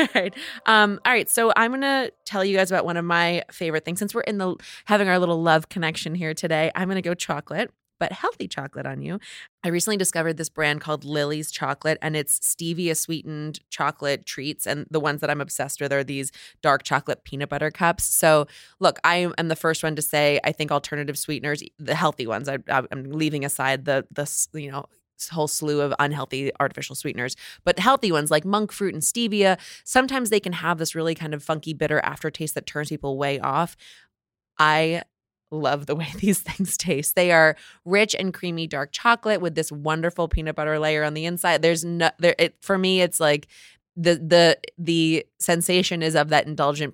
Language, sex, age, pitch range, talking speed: English, female, 20-39, 150-175 Hz, 205 wpm